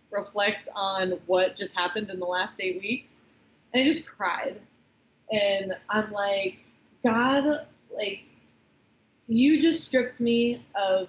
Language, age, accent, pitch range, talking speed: English, 20-39, American, 195-240 Hz, 130 wpm